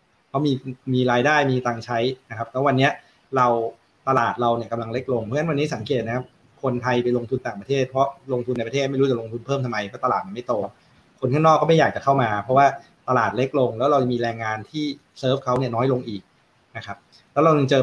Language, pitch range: Thai, 120-145 Hz